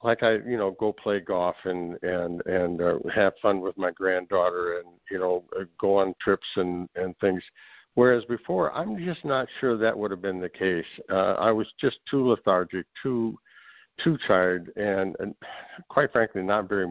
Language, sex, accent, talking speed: English, male, American, 185 wpm